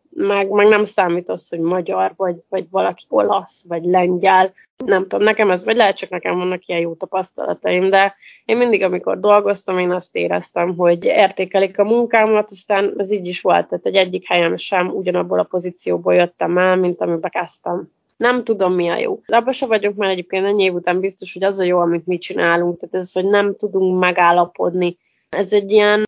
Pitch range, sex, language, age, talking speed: 180-215 Hz, female, Hungarian, 20-39, 195 wpm